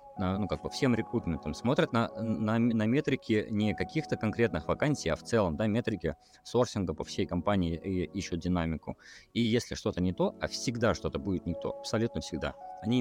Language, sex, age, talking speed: Russian, male, 20-39, 180 wpm